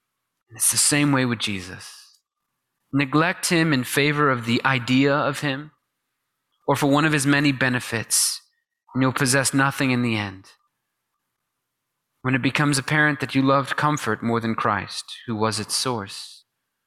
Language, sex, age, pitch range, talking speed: English, male, 30-49, 125-155 Hz, 155 wpm